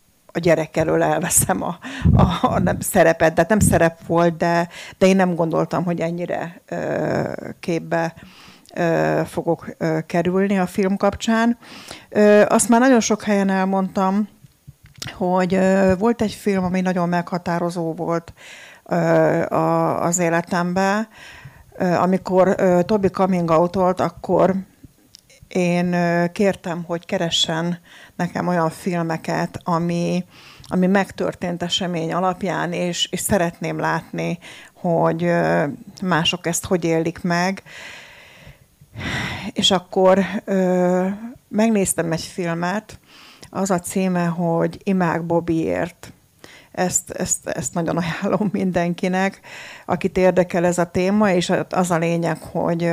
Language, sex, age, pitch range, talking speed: Hungarian, female, 50-69, 170-190 Hz, 120 wpm